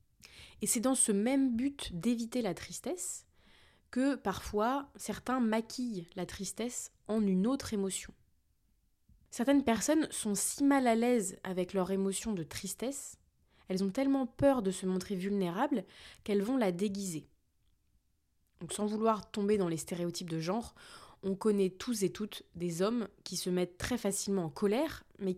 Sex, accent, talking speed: female, French, 160 wpm